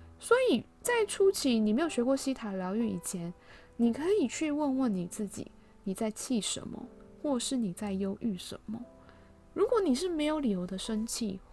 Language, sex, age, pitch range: Chinese, female, 20-39, 190-270 Hz